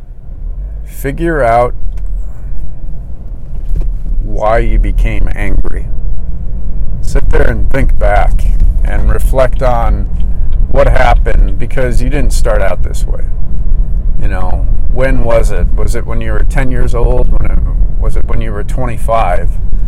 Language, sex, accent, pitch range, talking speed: English, male, American, 90-120 Hz, 125 wpm